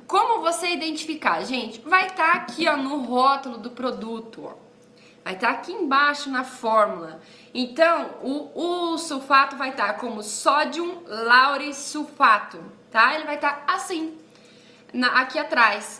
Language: Portuguese